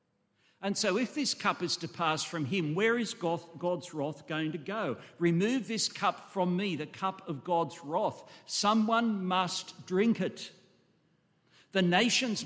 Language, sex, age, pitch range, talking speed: English, male, 60-79, 155-205 Hz, 160 wpm